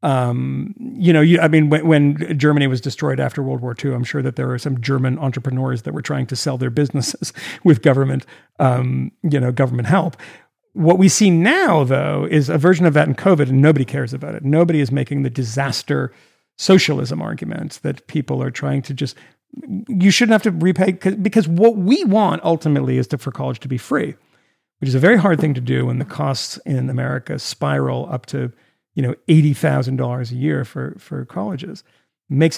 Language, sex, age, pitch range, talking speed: English, male, 50-69, 130-170 Hz, 200 wpm